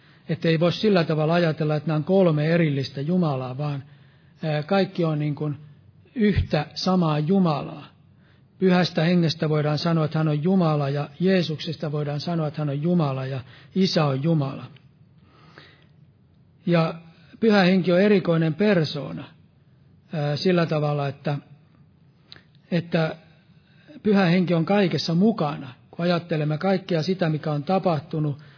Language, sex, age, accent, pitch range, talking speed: Finnish, male, 60-79, native, 150-175 Hz, 130 wpm